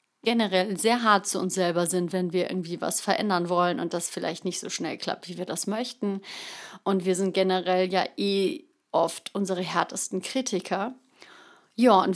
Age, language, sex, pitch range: 30-49, German, female, 185-235 Hz